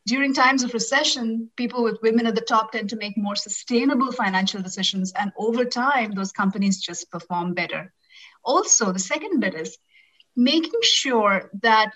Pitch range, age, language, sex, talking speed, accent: 195-250 Hz, 30-49, English, female, 165 wpm, Indian